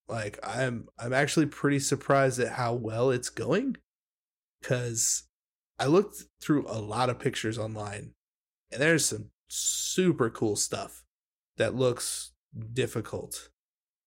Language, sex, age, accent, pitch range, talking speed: English, male, 20-39, American, 115-140 Hz, 130 wpm